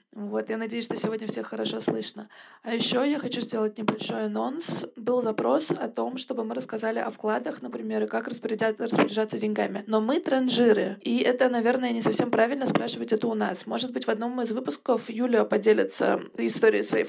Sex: female